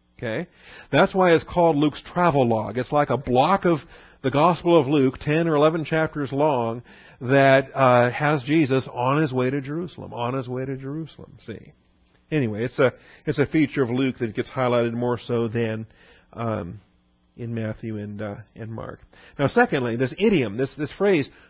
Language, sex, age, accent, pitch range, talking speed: English, male, 50-69, American, 115-145 Hz, 180 wpm